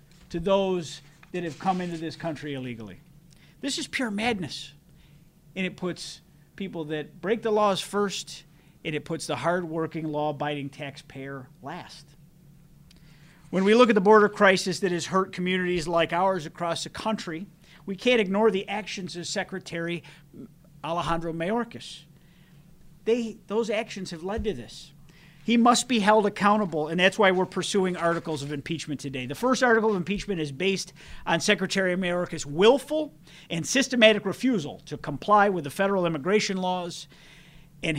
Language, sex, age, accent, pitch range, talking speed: English, male, 50-69, American, 155-200 Hz, 155 wpm